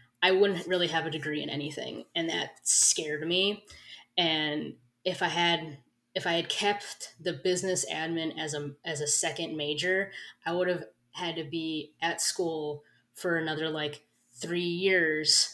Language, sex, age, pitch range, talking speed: English, female, 10-29, 150-185 Hz, 160 wpm